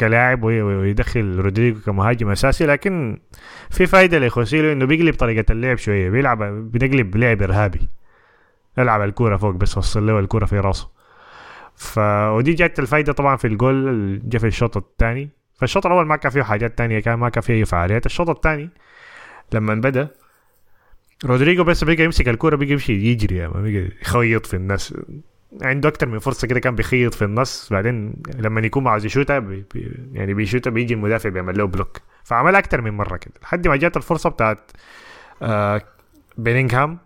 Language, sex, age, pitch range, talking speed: Arabic, male, 20-39, 105-145 Hz, 165 wpm